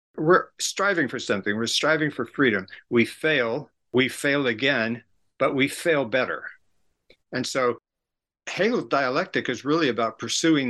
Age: 60-79